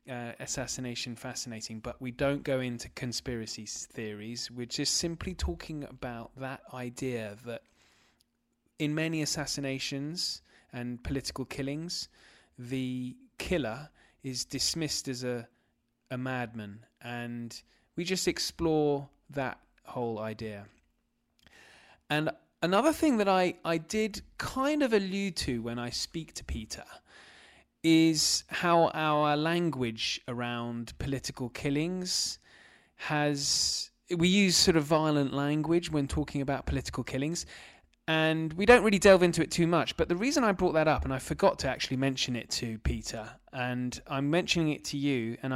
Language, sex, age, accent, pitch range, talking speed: English, male, 20-39, British, 125-160 Hz, 140 wpm